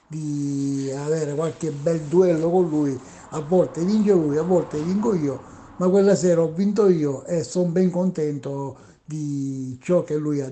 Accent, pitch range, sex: native, 135-170 Hz, male